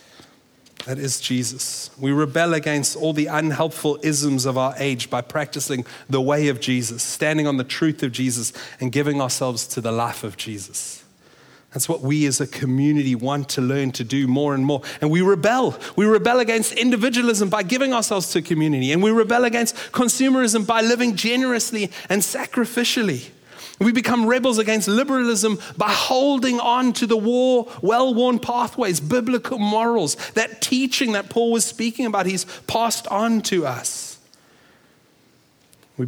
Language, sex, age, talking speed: English, male, 30-49, 160 wpm